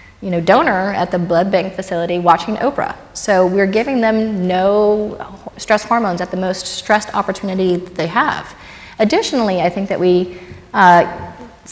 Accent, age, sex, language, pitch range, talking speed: American, 30-49, female, English, 170-205 Hz, 160 wpm